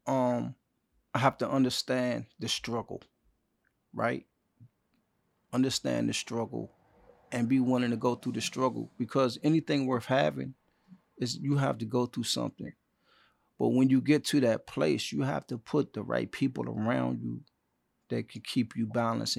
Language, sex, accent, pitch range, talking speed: English, male, American, 120-145 Hz, 160 wpm